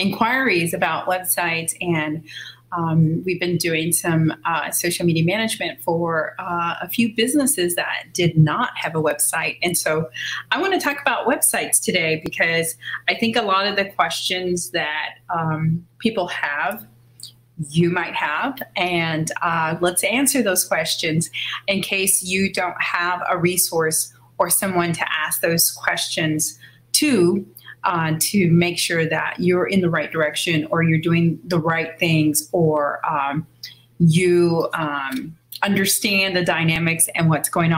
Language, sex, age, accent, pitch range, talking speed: English, female, 30-49, American, 155-185 Hz, 150 wpm